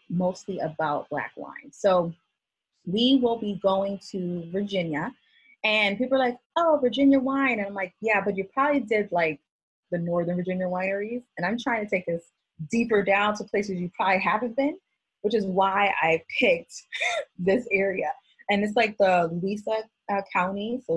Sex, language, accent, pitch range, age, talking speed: female, English, American, 170-220 Hz, 30-49, 170 wpm